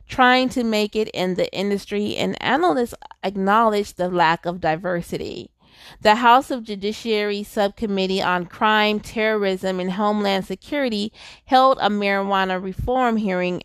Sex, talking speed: female, 130 wpm